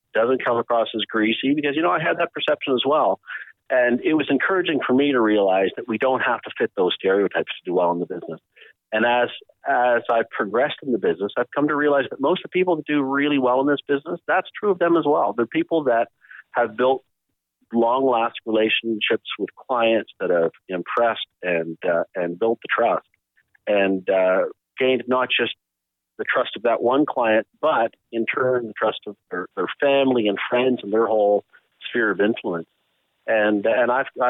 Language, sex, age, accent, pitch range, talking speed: English, male, 50-69, American, 105-130 Hz, 200 wpm